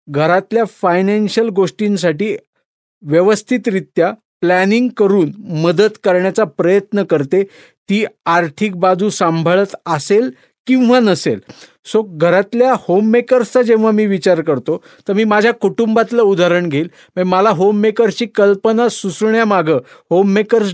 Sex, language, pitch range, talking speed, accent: male, Marathi, 180-215 Hz, 100 wpm, native